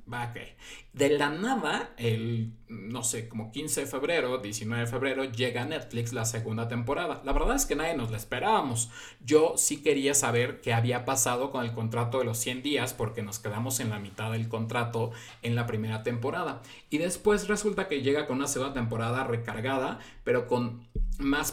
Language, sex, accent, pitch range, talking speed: Spanish, male, Mexican, 115-135 Hz, 180 wpm